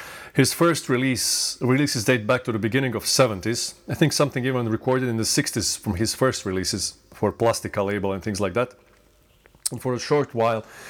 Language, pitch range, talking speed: English, 105-135 Hz, 200 wpm